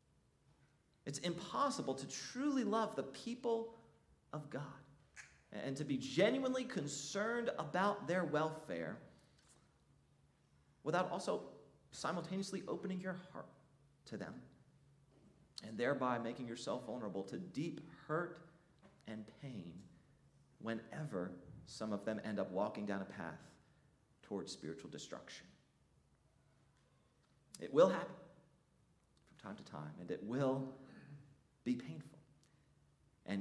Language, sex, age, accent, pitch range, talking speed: English, male, 40-59, American, 130-190 Hz, 110 wpm